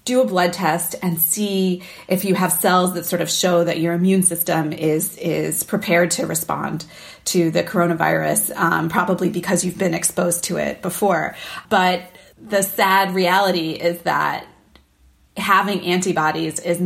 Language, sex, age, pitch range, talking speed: English, female, 30-49, 170-195 Hz, 155 wpm